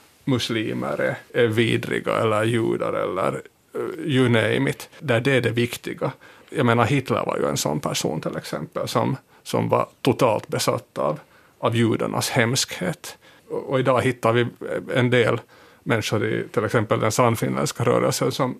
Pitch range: 115-125 Hz